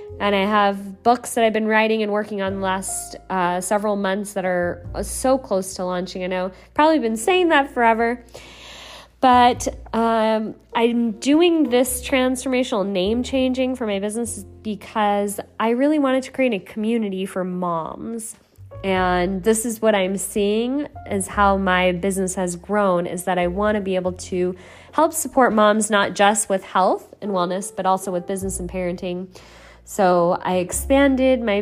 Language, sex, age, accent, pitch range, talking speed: English, female, 20-39, American, 190-245 Hz, 170 wpm